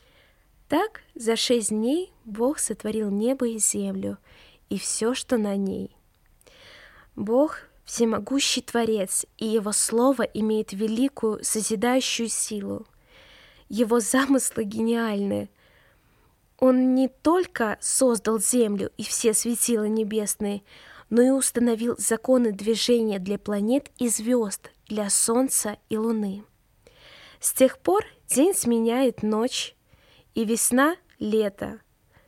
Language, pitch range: Russian, 215-250 Hz